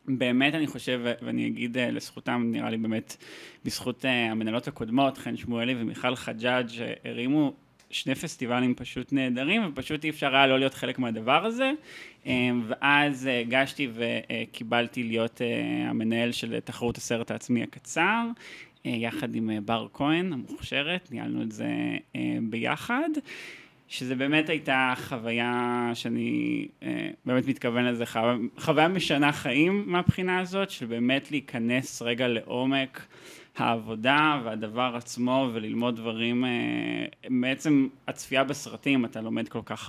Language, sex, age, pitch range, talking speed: Hebrew, male, 20-39, 115-140 Hz, 120 wpm